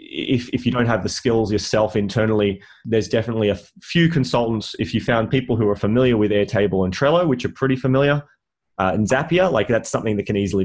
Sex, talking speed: male, 230 wpm